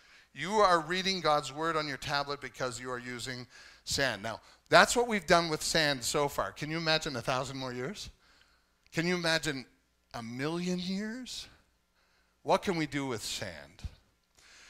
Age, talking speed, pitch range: 50-69, 165 wpm, 115-155 Hz